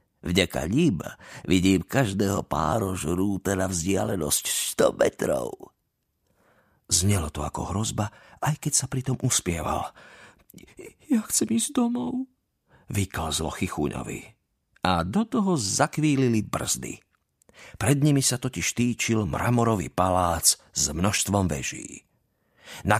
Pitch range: 85-135 Hz